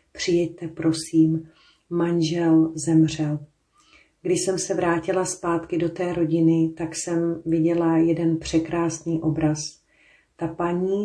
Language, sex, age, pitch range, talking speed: Slovak, female, 40-59, 160-170 Hz, 110 wpm